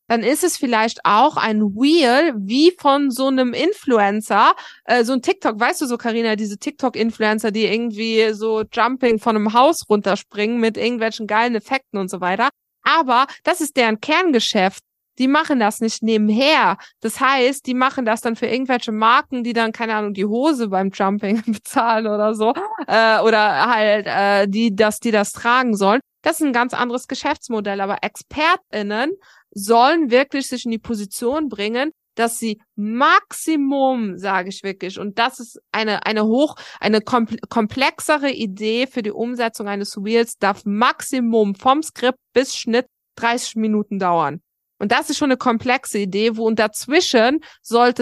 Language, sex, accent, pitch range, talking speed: German, female, German, 210-260 Hz, 165 wpm